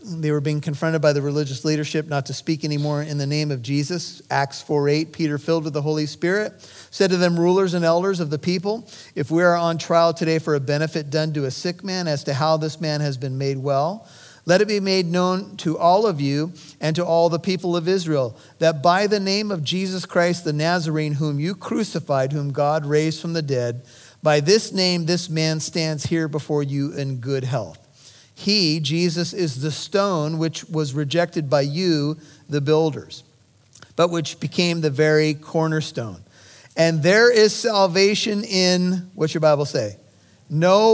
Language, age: English, 40-59